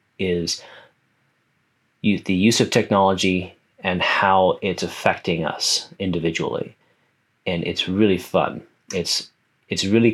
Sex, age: male, 30-49